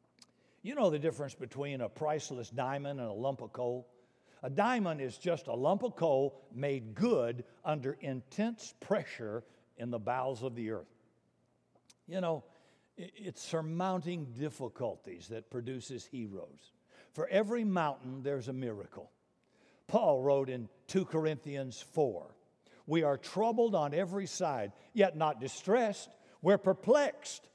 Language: English